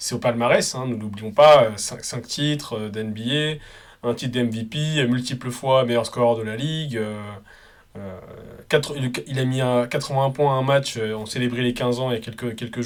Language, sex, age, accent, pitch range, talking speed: French, male, 20-39, French, 115-135 Hz, 205 wpm